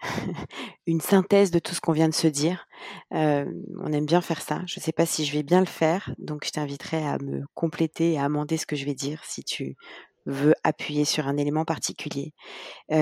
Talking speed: 225 wpm